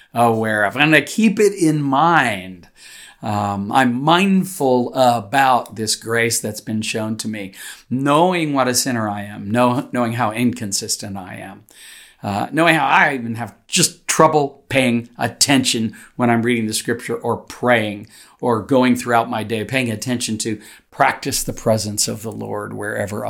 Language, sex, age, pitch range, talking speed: English, male, 50-69, 110-145 Hz, 160 wpm